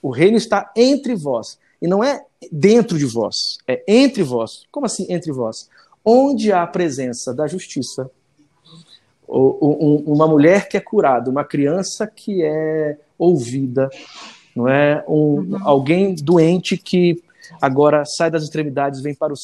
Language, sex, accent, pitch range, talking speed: Portuguese, male, Brazilian, 145-185 Hz, 145 wpm